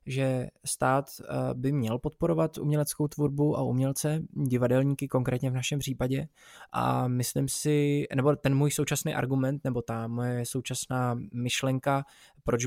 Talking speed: 135 wpm